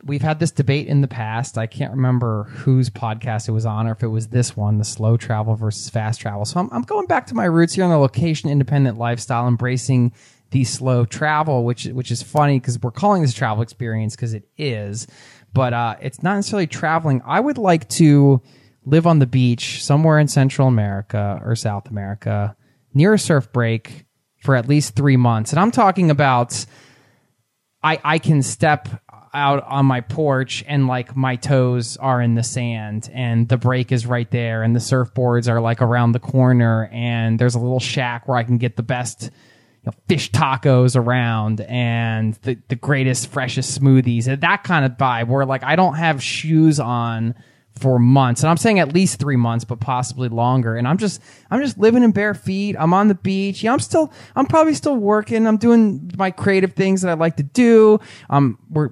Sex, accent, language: male, American, English